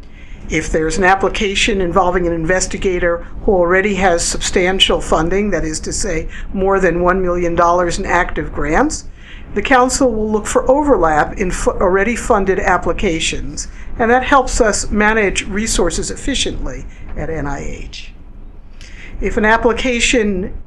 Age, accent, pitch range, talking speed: 60-79, American, 180-225 Hz, 130 wpm